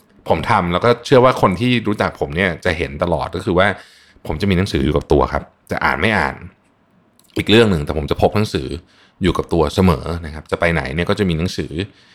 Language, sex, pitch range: Thai, male, 80-115 Hz